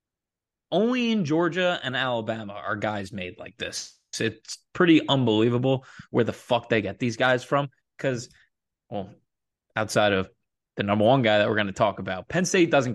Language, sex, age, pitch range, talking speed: English, male, 20-39, 105-135 Hz, 175 wpm